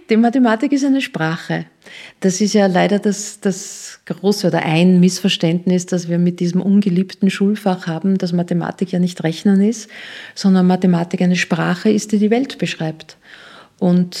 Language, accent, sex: German, Austrian, female